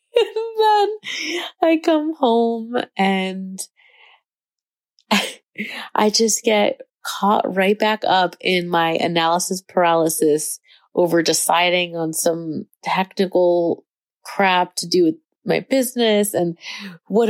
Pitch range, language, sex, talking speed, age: 175-230 Hz, English, female, 105 wpm, 30-49